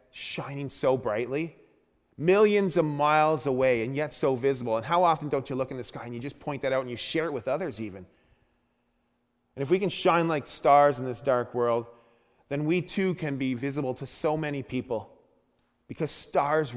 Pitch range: 125-170 Hz